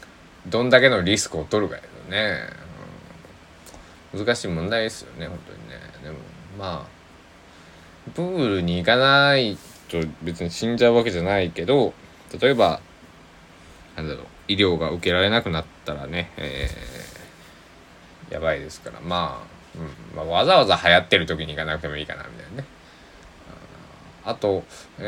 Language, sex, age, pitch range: Japanese, male, 20-39, 80-115 Hz